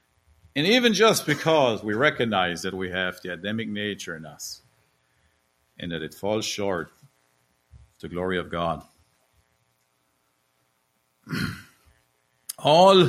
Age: 50-69